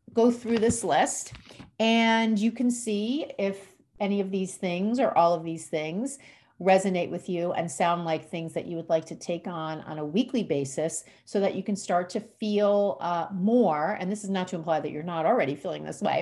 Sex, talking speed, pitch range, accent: female, 215 wpm, 165-220 Hz, American